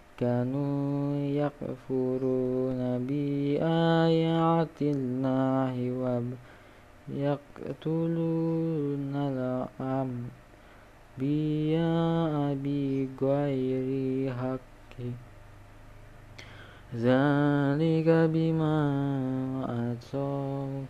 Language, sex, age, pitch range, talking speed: Indonesian, male, 20-39, 125-145 Hz, 45 wpm